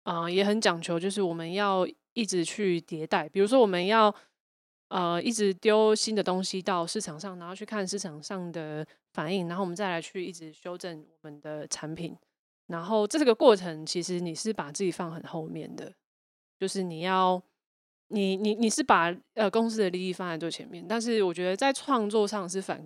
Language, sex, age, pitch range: Chinese, female, 20-39, 170-210 Hz